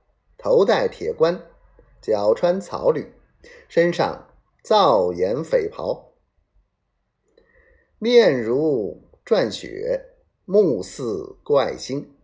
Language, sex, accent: Chinese, male, native